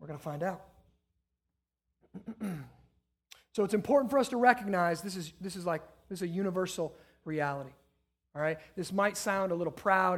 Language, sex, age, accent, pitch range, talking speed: English, male, 30-49, American, 165-225 Hz, 170 wpm